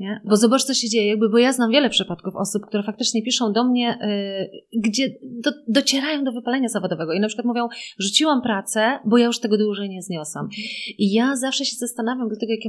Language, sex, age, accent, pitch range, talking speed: Polish, female, 30-49, native, 195-245 Hz, 220 wpm